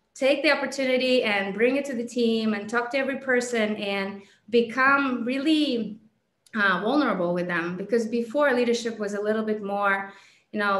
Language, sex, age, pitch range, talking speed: English, female, 20-39, 205-240 Hz, 170 wpm